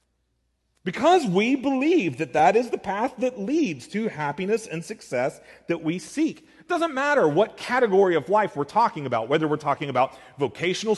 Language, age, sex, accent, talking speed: English, 40-59, male, American, 175 wpm